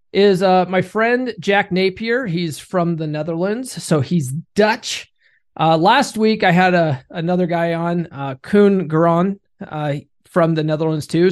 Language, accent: English, American